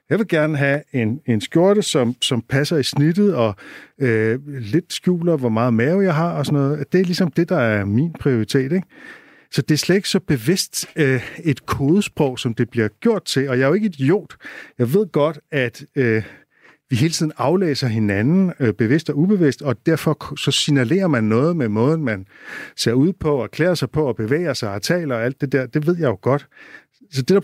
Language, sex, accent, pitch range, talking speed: Danish, male, native, 120-165 Hz, 225 wpm